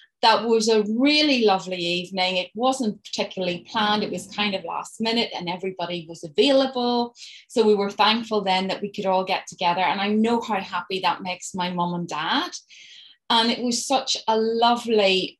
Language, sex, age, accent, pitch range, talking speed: English, female, 30-49, British, 185-235 Hz, 185 wpm